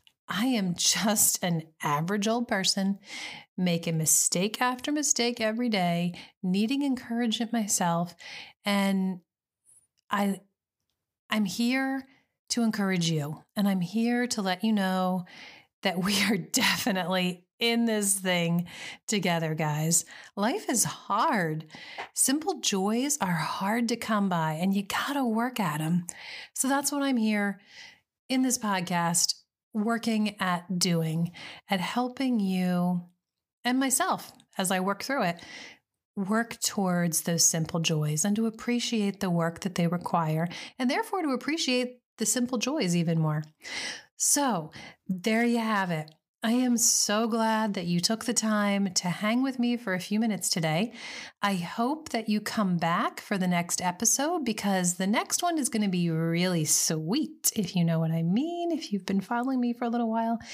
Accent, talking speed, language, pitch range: American, 155 wpm, English, 175-235 Hz